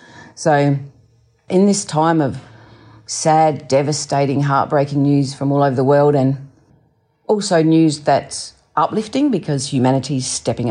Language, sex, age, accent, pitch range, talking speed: English, female, 40-59, Australian, 140-175 Hz, 125 wpm